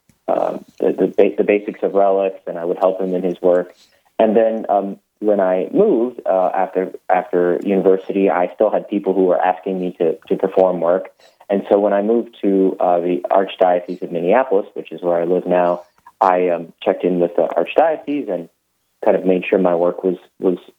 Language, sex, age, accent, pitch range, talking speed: English, male, 30-49, American, 90-100 Hz, 200 wpm